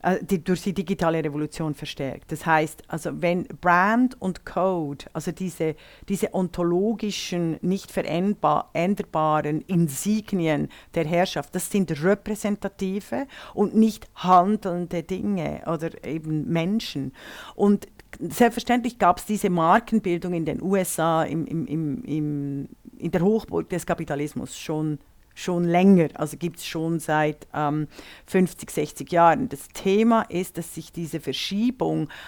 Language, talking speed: German, 130 wpm